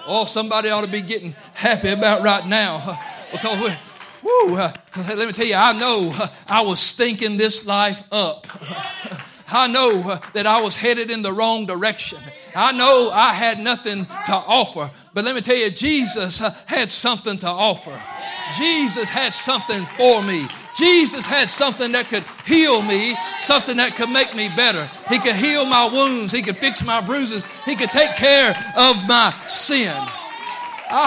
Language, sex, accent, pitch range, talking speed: English, male, American, 215-290 Hz, 165 wpm